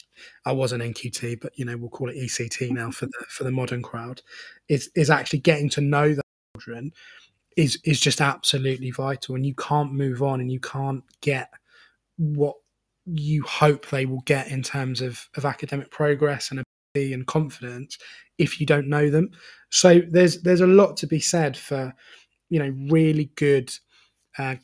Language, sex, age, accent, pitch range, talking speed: English, male, 20-39, British, 130-150 Hz, 185 wpm